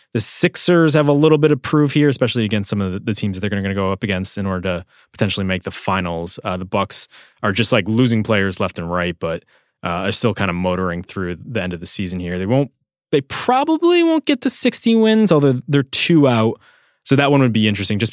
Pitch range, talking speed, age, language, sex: 95-130 Hz, 245 wpm, 20-39, English, male